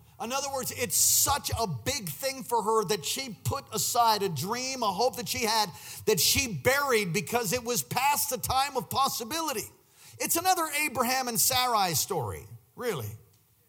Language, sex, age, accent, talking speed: English, male, 50-69, American, 170 wpm